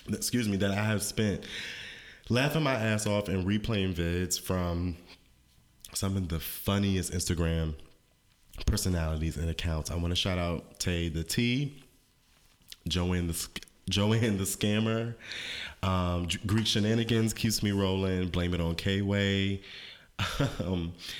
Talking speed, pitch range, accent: 130 wpm, 85-105 Hz, American